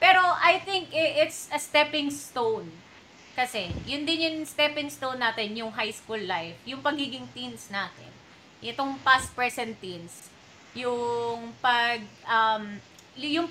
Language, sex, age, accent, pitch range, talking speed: Filipino, female, 20-39, native, 220-295 Hz, 120 wpm